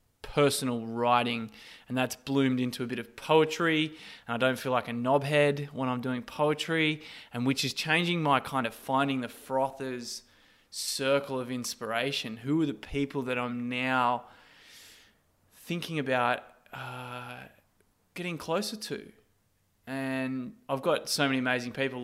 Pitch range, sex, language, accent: 120-140 Hz, male, English, Australian